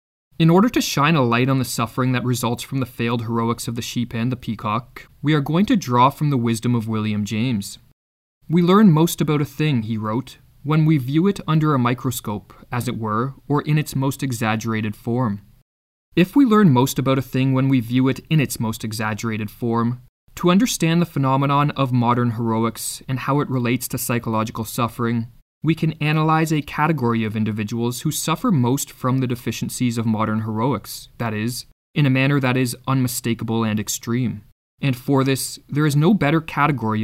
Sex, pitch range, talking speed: male, 115-150 Hz, 195 wpm